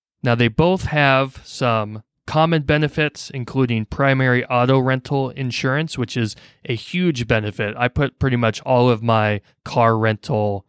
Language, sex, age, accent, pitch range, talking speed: English, male, 20-39, American, 110-130 Hz, 145 wpm